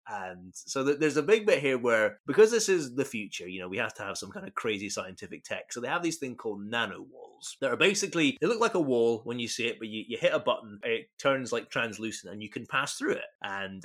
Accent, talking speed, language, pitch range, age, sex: British, 270 wpm, English, 105-145 Hz, 30-49, male